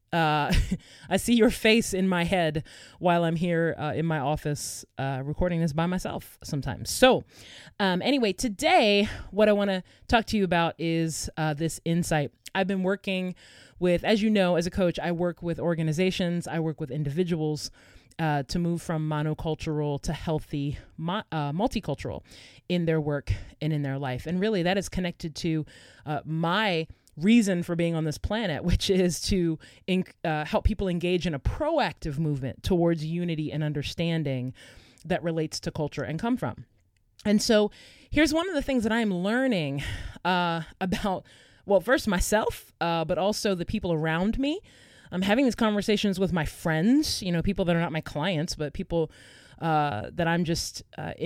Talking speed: 180 wpm